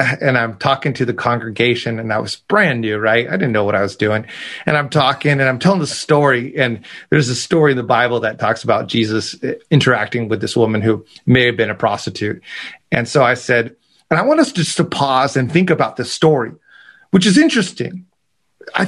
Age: 30-49